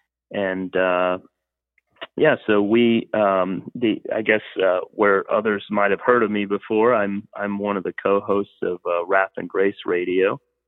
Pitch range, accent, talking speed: 90-110 Hz, American, 165 wpm